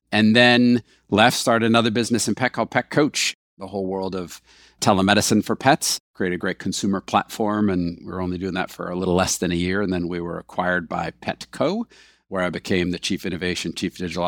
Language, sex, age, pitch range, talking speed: English, male, 50-69, 90-110 Hz, 215 wpm